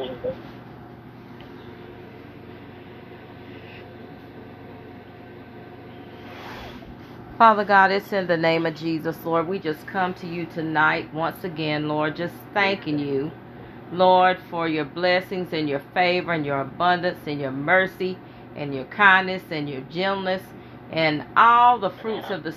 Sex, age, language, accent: female, 40-59, English, American